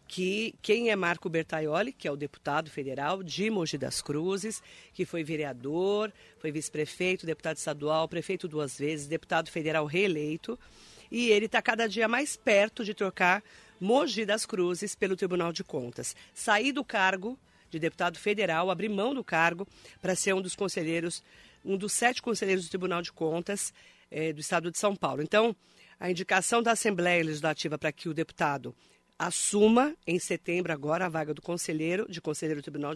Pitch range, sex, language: 165-215 Hz, female, Spanish